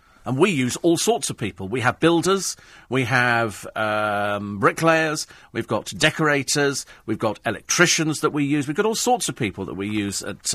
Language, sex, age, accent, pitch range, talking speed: English, male, 40-59, British, 110-145 Hz, 190 wpm